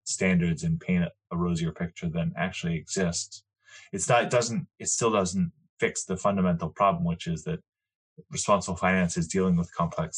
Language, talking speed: English, 170 wpm